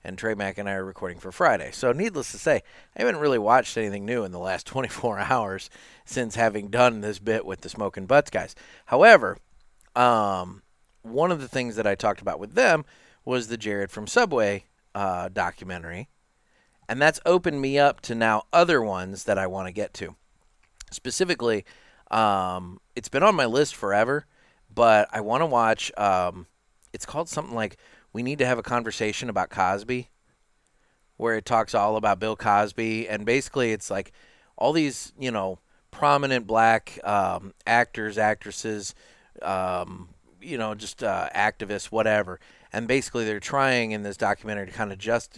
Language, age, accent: English, 30-49, American